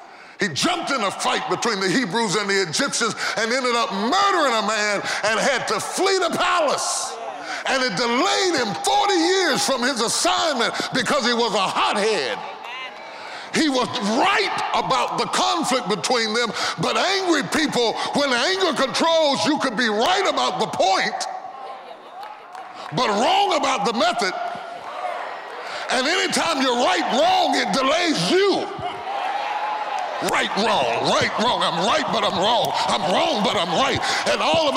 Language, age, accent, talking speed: English, 40-59, American, 150 wpm